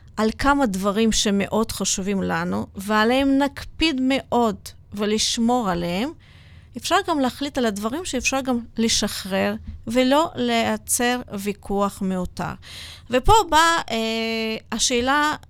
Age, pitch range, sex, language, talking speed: 30-49, 190-265 Hz, female, Hebrew, 105 wpm